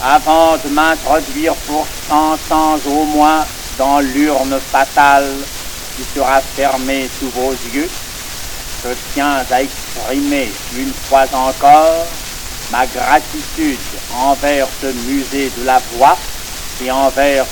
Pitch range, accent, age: 140-170 Hz, French, 60-79